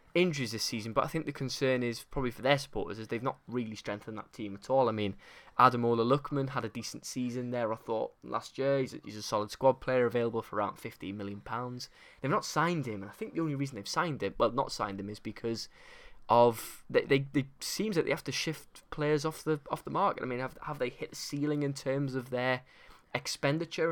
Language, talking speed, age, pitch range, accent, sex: English, 240 wpm, 10-29, 110-140 Hz, British, male